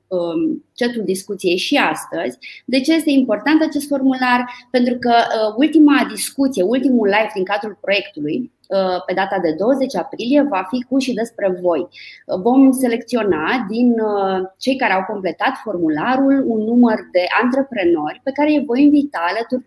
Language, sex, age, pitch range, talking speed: Romanian, female, 20-39, 200-275 Hz, 145 wpm